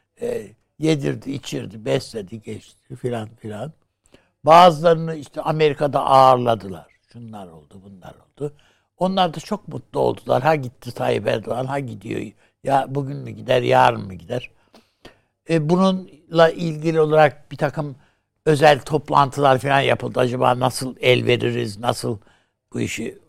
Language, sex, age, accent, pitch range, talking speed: Turkish, male, 60-79, native, 120-190 Hz, 125 wpm